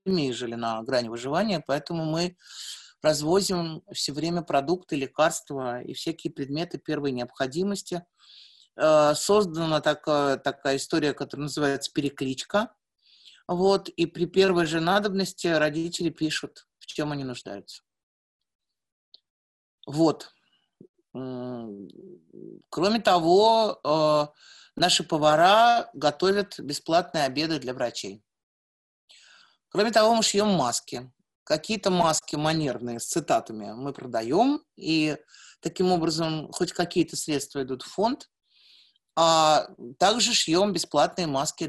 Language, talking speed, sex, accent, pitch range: Russian, 100 wpm, male, native, 135-185 Hz